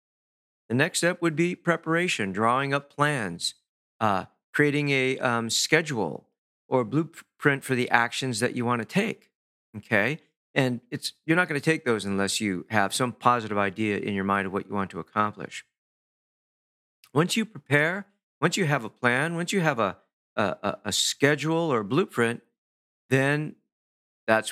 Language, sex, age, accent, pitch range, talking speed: English, male, 50-69, American, 105-145 Hz, 165 wpm